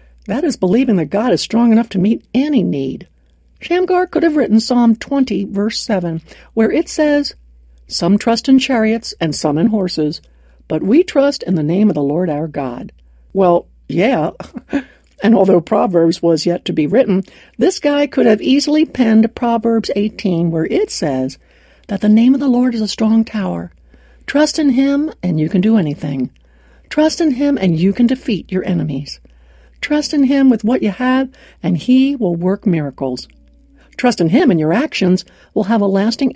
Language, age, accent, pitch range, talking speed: English, 60-79, American, 170-260 Hz, 185 wpm